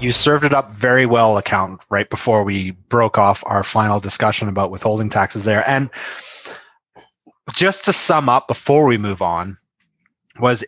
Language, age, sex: English, 20-39, male